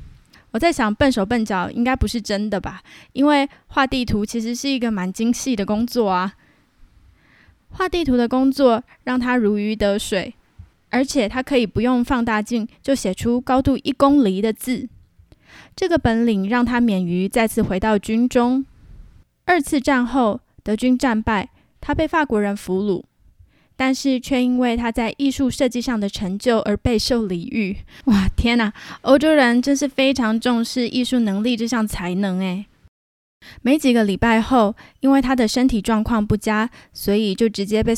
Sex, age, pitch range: female, 10-29, 205-265 Hz